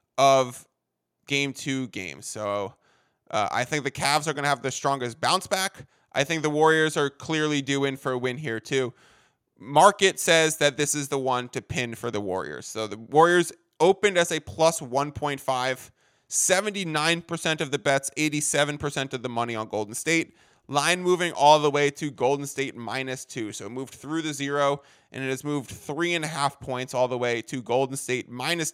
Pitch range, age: 130-160 Hz, 20-39